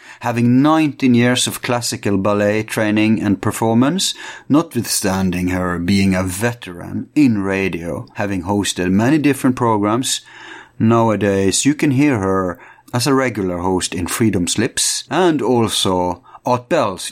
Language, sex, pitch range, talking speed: English, male, 95-120 Hz, 130 wpm